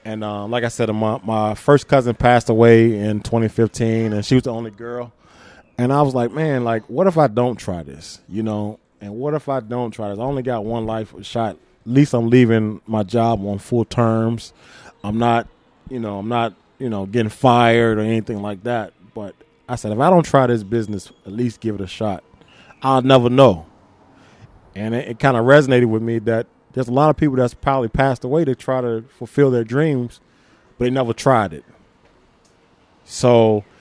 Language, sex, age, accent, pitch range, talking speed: English, male, 20-39, American, 110-130 Hz, 205 wpm